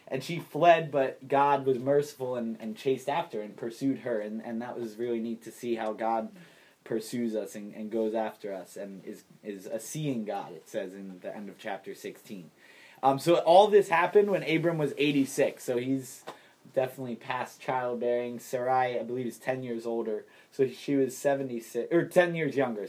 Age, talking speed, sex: 20-39, 195 wpm, male